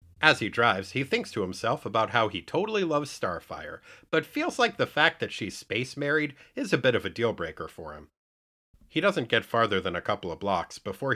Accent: American